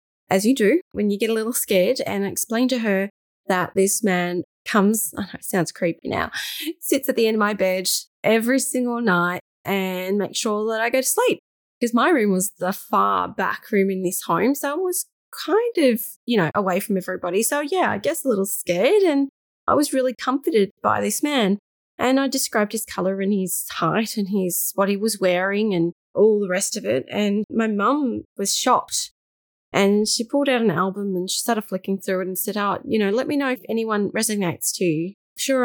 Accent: Australian